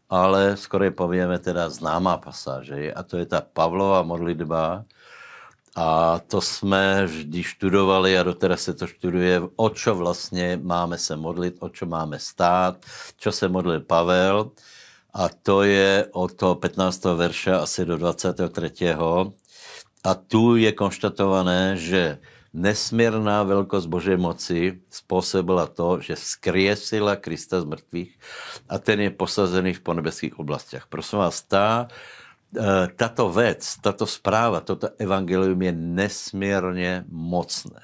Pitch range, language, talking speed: 85-100 Hz, Slovak, 130 wpm